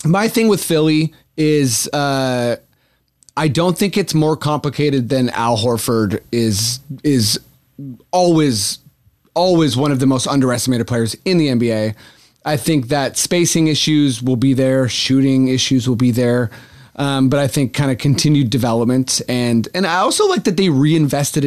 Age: 30-49